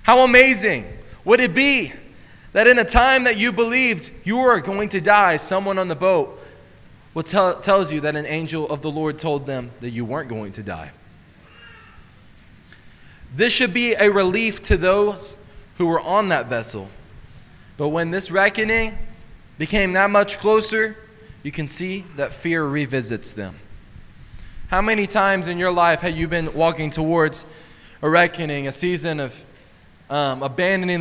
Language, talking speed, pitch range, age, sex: English, 165 wpm, 110-175 Hz, 20-39, male